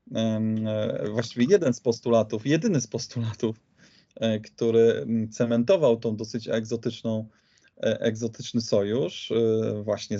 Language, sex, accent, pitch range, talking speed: Polish, male, native, 110-125 Hz, 90 wpm